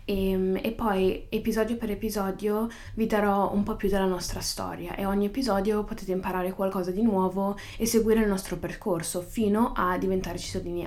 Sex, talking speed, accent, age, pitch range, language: female, 170 wpm, native, 20-39, 185-215 Hz, Italian